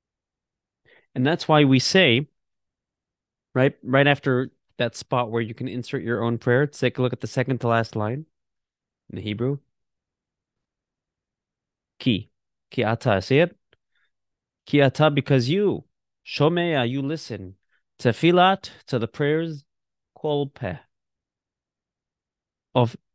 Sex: male